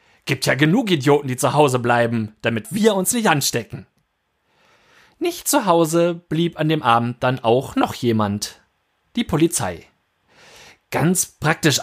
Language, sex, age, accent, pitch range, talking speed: German, male, 30-49, German, 135-200 Hz, 140 wpm